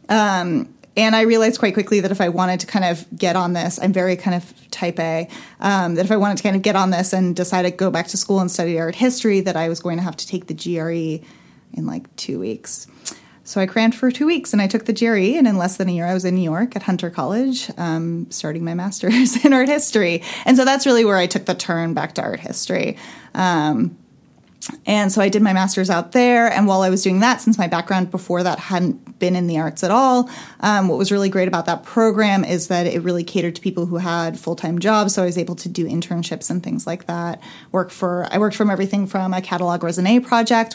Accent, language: American, English